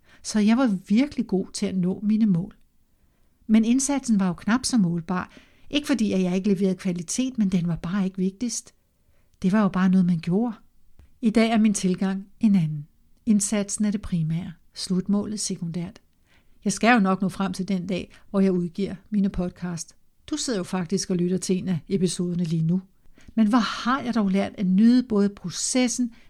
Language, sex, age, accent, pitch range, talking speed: Danish, female, 60-79, native, 185-220 Hz, 195 wpm